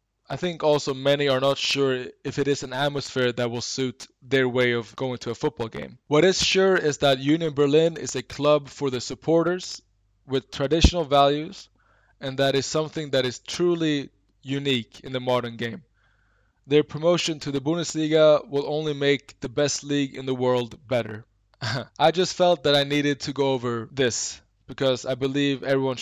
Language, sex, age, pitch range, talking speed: English, male, 20-39, 125-155 Hz, 185 wpm